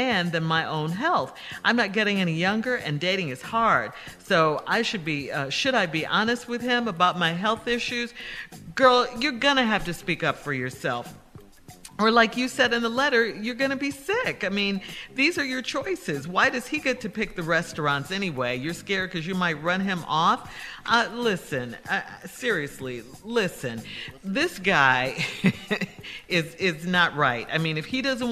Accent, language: American, English